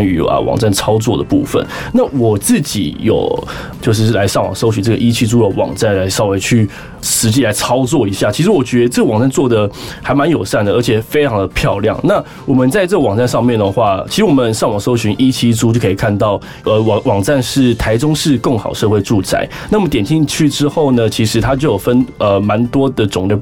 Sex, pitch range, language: male, 105-135 Hz, Chinese